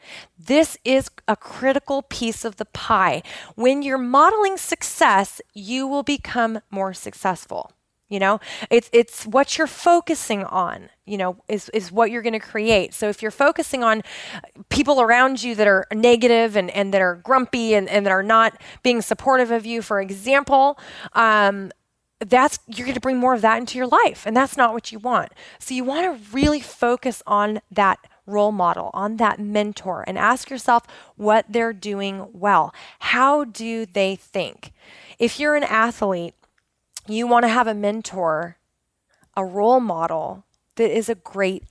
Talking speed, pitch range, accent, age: 175 wpm, 205-260 Hz, American, 30-49